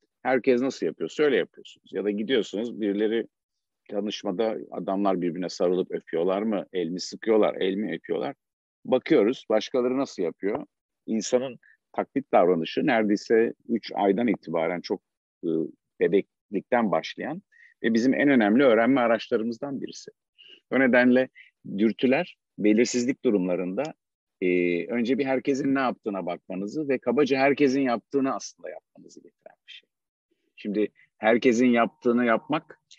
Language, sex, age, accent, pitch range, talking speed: Turkish, male, 50-69, native, 105-125 Hz, 115 wpm